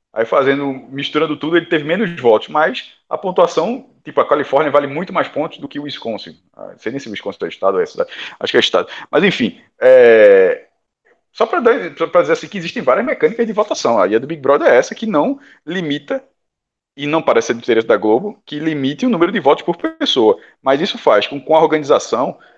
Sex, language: male, Portuguese